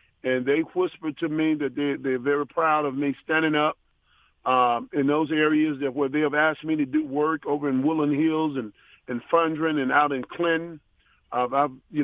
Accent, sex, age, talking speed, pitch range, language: American, male, 50-69, 210 wpm, 140-175 Hz, English